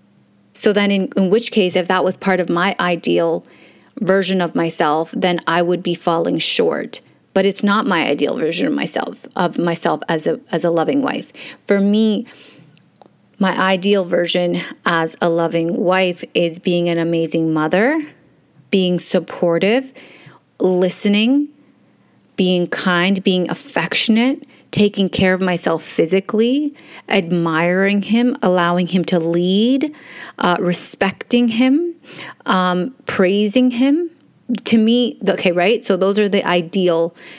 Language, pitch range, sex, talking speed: English, 170-215 Hz, female, 135 wpm